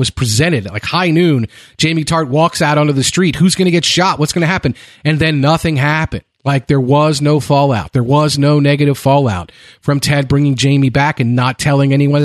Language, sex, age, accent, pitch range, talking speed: English, male, 40-59, American, 130-165 Hz, 220 wpm